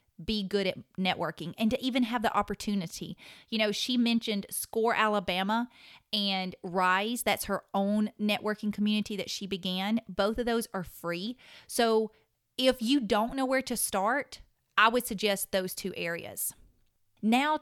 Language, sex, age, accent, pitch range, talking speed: English, female, 30-49, American, 190-235 Hz, 155 wpm